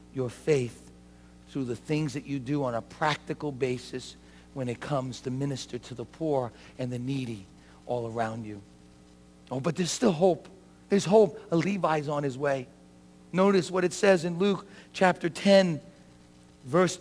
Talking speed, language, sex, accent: 165 wpm, English, male, American